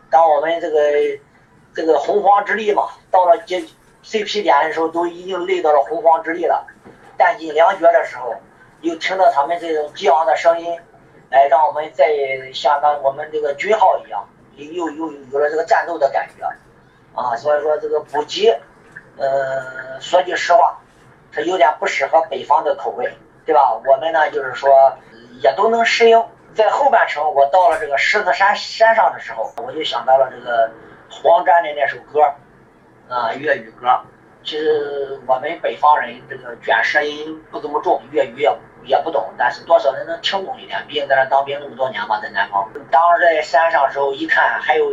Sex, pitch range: male, 135-180 Hz